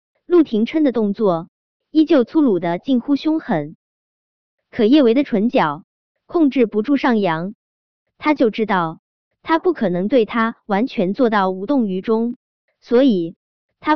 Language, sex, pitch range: Chinese, male, 195-285 Hz